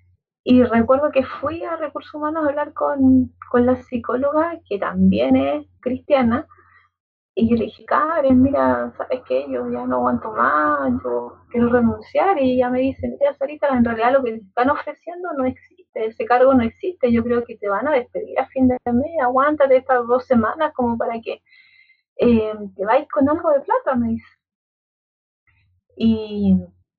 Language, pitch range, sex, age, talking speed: Spanish, 205-275 Hz, female, 30-49, 175 wpm